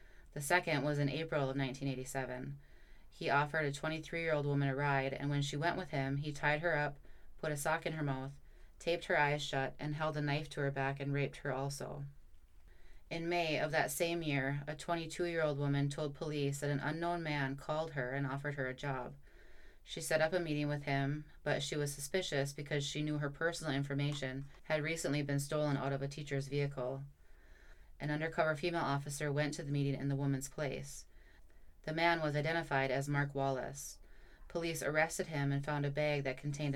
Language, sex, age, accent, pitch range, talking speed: English, female, 20-39, American, 135-155 Hz, 200 wpm